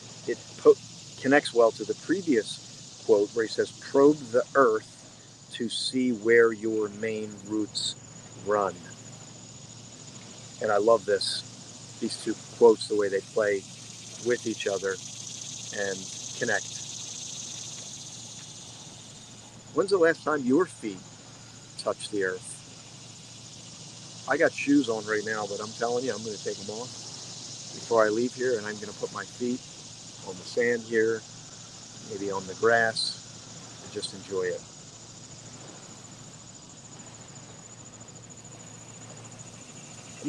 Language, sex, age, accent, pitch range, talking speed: English, male, 40-59, American, 115-150 Hz, 125 wpm